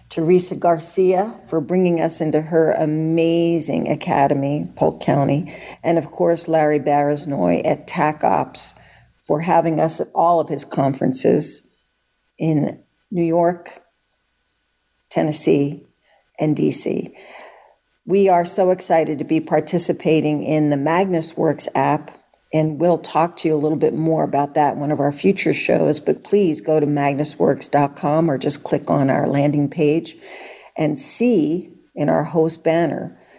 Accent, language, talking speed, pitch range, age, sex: American, English, 140 wpm, 150-170 Hz, 50-69, female